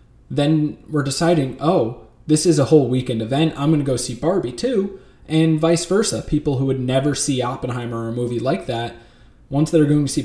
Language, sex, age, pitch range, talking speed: English, male, 20-39, 120-150 Hz, 210 wpm